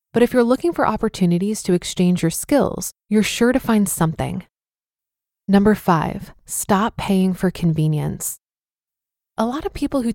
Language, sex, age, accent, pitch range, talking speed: English, female, 20-39, American, 190-240 Hz, 155 wpm